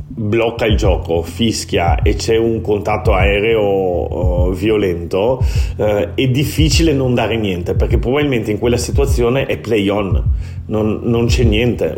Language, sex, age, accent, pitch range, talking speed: Italian, male, 40-59, native, 90-115 Hz, 145 wpm